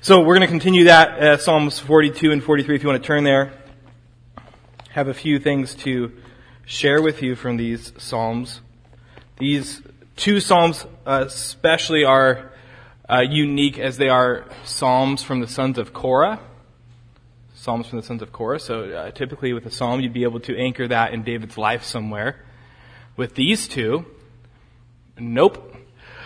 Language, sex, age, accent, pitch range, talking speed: English, male, 20-39, American, 120-165 Hz, 160 wpm